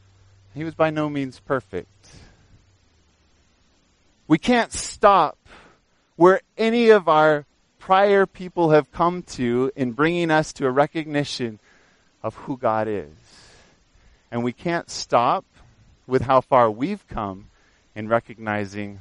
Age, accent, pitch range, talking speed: 30-49, American, 105-160 Hz, 125 wpm